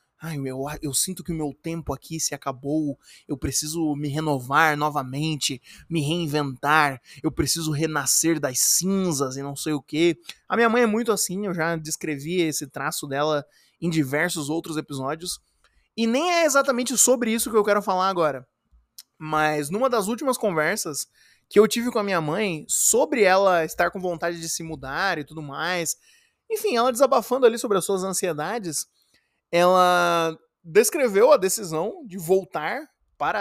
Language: Portuguese